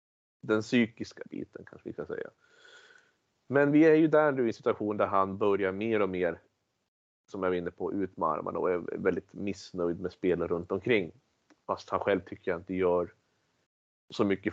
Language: Swedish